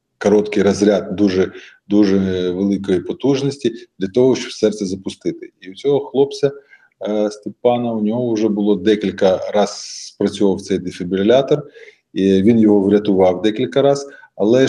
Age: 20-39